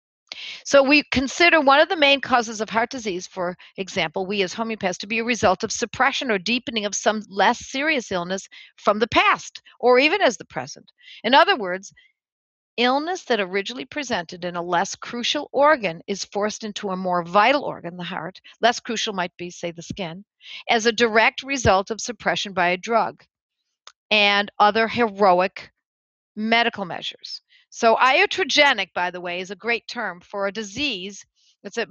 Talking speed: 175 wpm